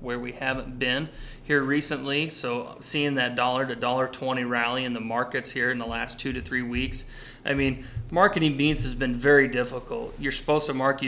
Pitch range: 130-140 Hz